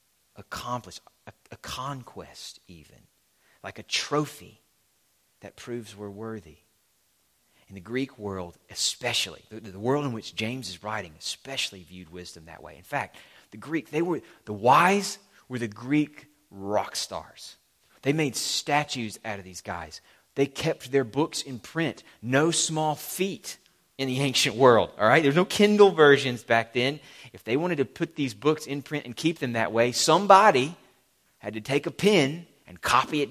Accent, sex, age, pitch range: American, male, 30-49, 105-150 Hz